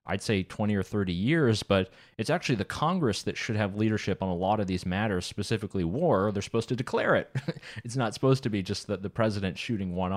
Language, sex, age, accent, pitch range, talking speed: English, male, 30-49, American, 95-120 Hz, 230 wpm